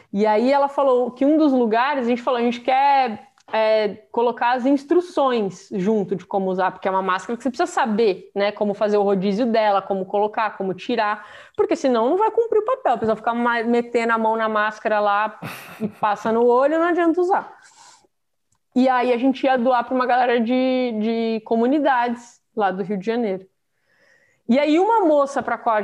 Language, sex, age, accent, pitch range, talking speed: Portuguese, female, 20-39, Brazilian, 205-285 Hz, 200 wpm